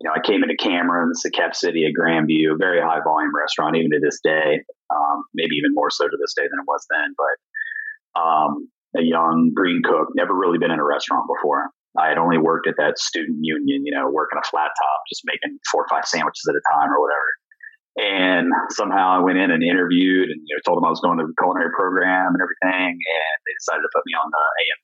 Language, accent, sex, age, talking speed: English, American, male, 30-49, 240 wpm